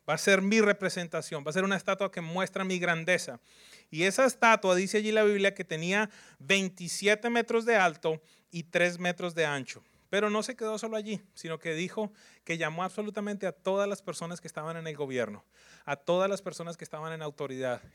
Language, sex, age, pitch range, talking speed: English, male, 30-49, 155-210 Hz, 205 wpm